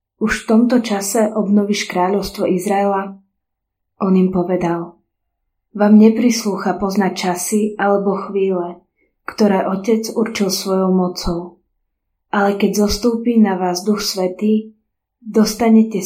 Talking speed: 110 wpm